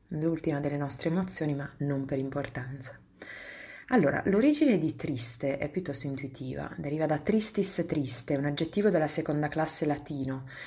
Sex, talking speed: female, 140 wpm